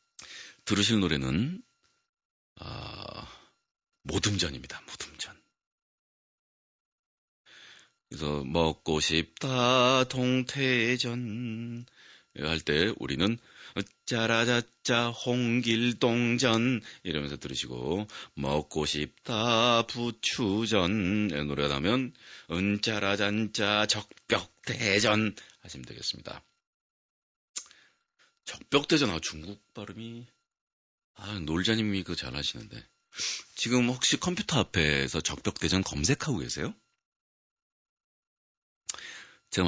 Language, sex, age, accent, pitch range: Korean, male, 40-59, native, 80-120 Hz